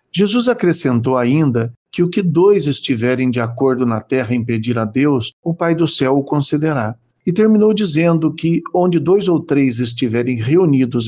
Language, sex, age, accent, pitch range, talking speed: Portuguese, male, 50-69, Brazilian, 125-165 Hz, 175 wpm